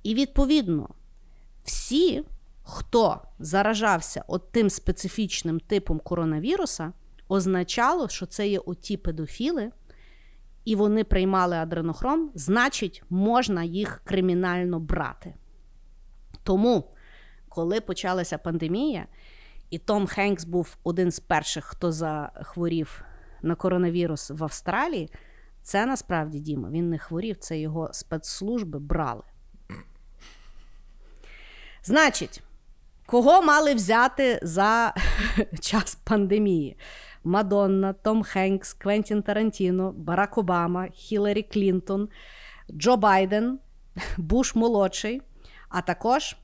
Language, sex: Ukrainian, female